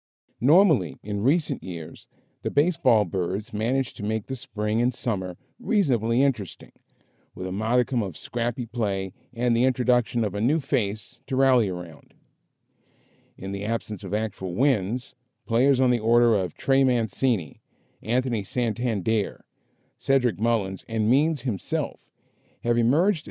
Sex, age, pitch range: male, 50-69, 105-130 Hz